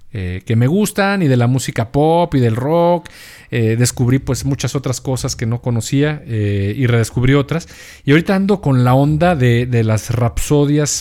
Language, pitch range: Spanish, 120-150 Hz